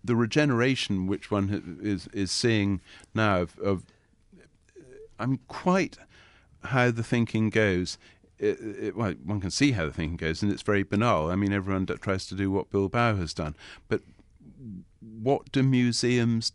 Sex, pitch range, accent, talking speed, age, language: male, 85-105 Hz, British, 165 wpm, 50-69, English